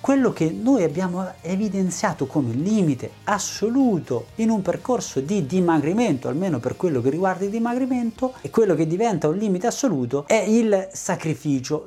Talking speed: 150 wpm